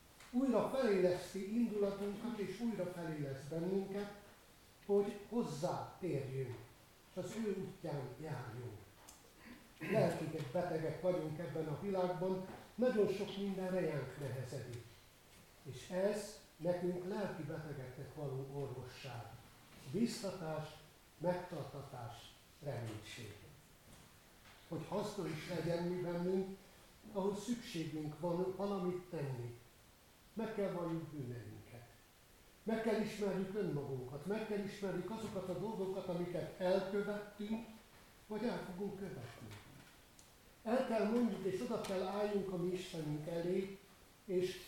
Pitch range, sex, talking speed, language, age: 140-195 Hz, male, 105 wpm, Hungarian, 60-79